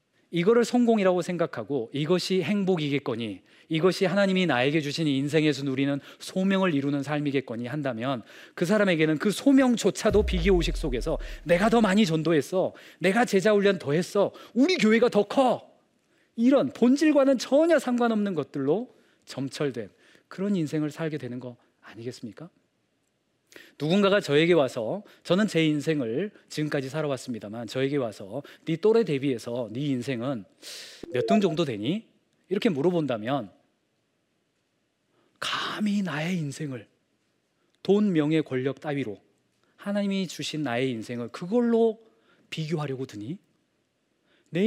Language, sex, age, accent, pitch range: Korean, male, 40-59, native, 140-220 Hz